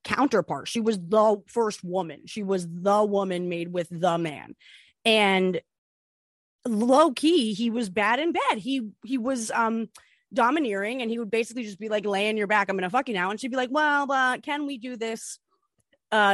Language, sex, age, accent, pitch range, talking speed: English, female, 20-39, American, 195-255 Hz, 195 wpm